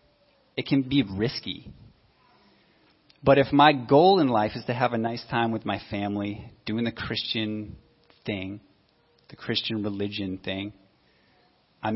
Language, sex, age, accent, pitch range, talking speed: English, male, 30-49, American, 100-125 Hz, 140 wpm